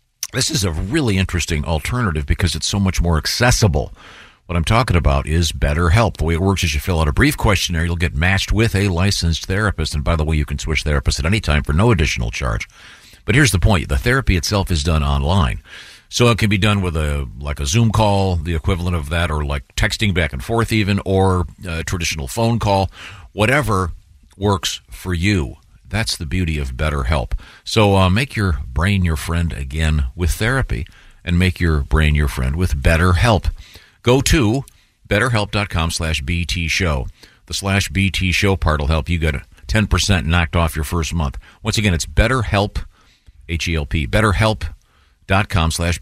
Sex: male